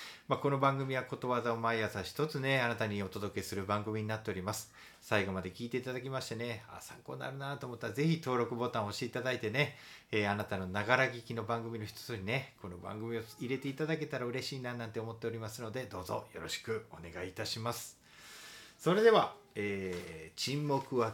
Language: Japanese